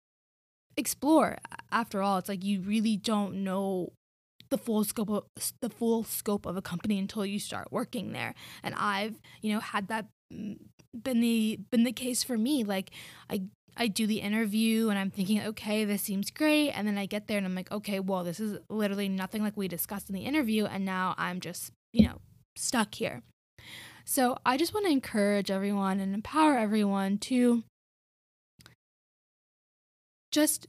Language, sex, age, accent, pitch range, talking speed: English, female, 10-29, American, 195-230 Hz, 175 wpm